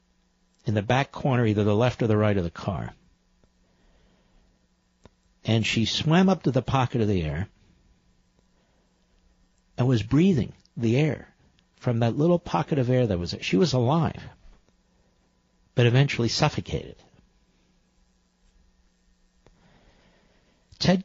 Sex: male